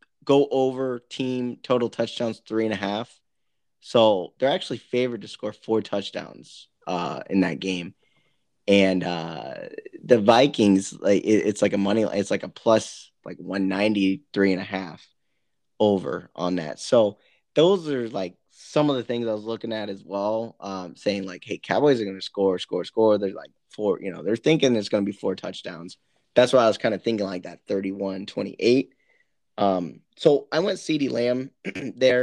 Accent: American